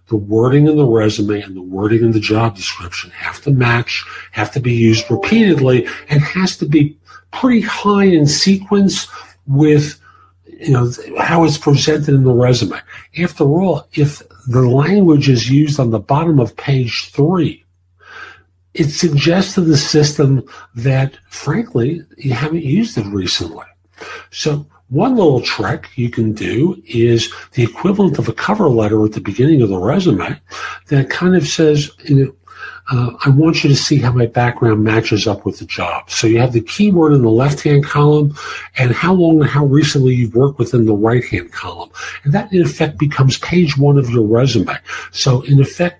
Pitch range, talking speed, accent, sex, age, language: 115-155 Hz, 175 wpm, American, male, 50-69, English